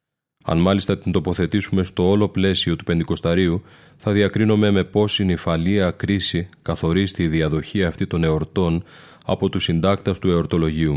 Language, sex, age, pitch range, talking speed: Greek, male, 30-49, 85-100 Hz, 140 wpm